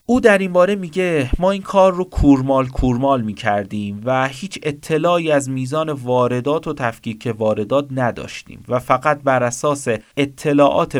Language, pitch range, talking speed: Persian, 125-175 Hz, 140 wpm